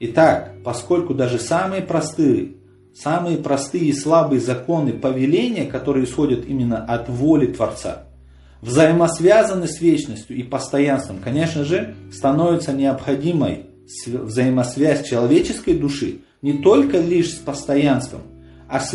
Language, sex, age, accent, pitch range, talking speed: Ukrainian, male, 40-59, native, 120-160 Hz, 115 wpm